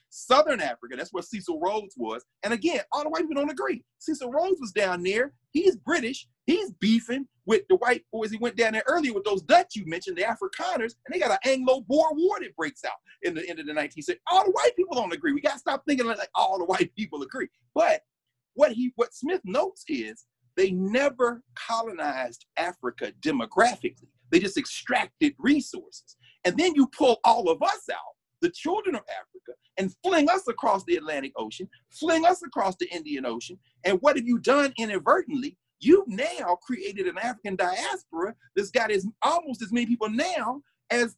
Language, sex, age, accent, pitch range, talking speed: English, male, 40-59, American, 205-335 Hz, 200 wpm